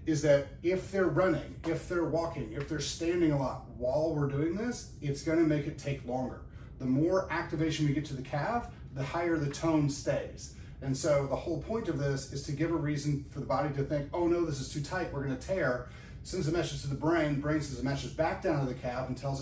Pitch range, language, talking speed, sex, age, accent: 135-155 Hz, English, 245 wpm, male, 30-49, American